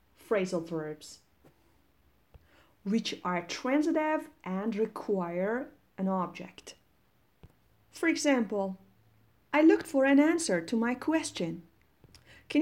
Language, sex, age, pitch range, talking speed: Persian, female, 30-49, 185-250 Hz, 95 wpm